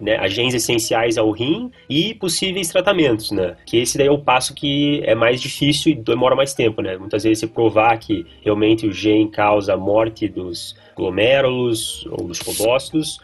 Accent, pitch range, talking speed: Brazilian, 105-130 Hz, 180 wpm